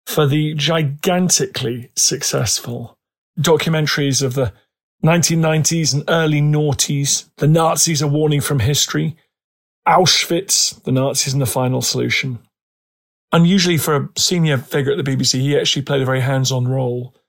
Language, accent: English, British